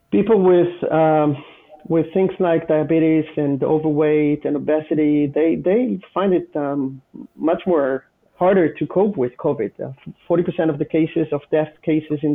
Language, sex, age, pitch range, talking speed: English, male, 40-59, 145-170 Hz, 155 wpm